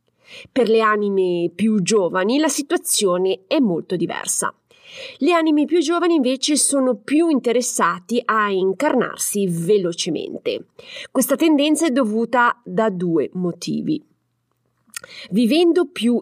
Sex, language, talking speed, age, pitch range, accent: female, Italian, 110 wpm, 30-49, 190-270 Hz, native